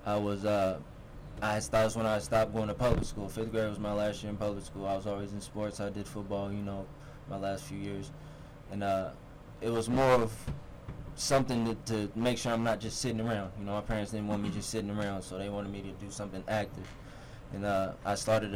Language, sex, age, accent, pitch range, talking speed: English, male, 20-39, American, 100-115 Hz, 235 wpm